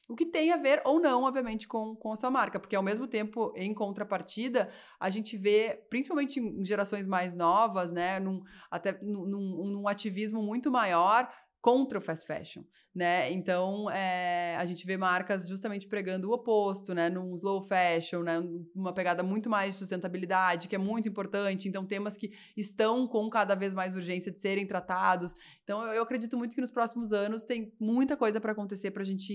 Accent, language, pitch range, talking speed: Brazilian, Portuguese, 185-230 Hz, 190 wpm